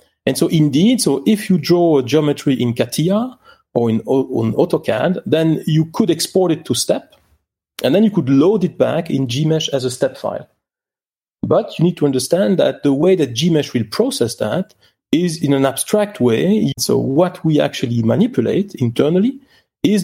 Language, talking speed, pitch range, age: English, 180 wpm, 140-190 Hz, 40-59